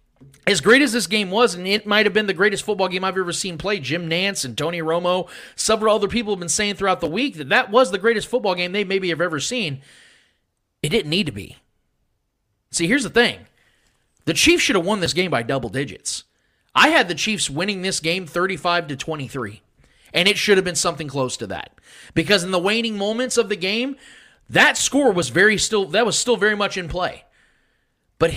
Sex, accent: male, American